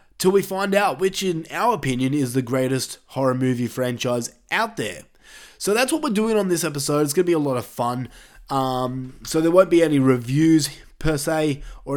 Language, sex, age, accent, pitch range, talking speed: English, male, 20-39, Australian, 130-170 Hz, 210 wpm